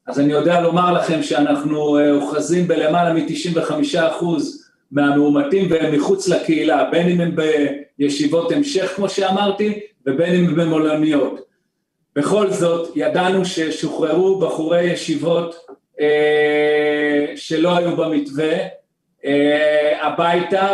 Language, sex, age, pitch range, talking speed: Hebrew, male, 40-59, 155-185 Hz, 105 wpm